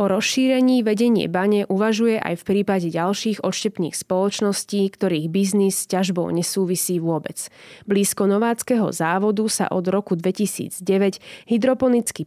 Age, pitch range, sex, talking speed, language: 20-39, 175-215 Hz, female, 120 wpm, Slovak